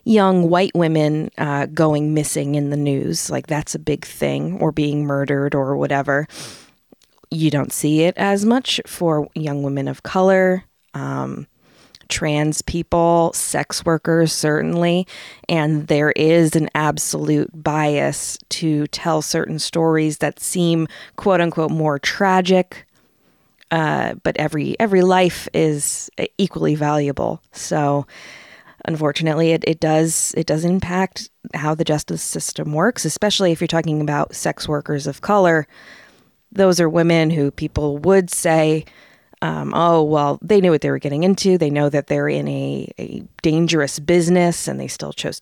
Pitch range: 150-175 Hz